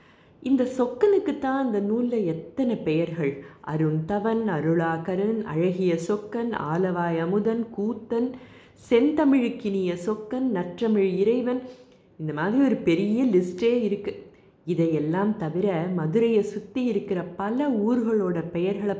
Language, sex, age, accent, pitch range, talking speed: Tamil, female, 20-39, native, 170-225 Hz, 105 wpm